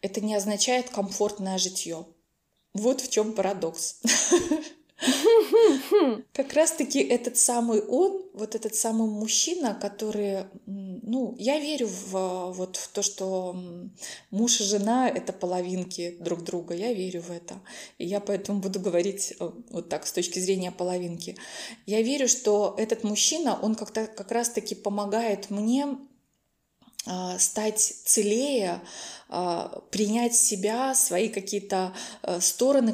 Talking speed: 120 wpm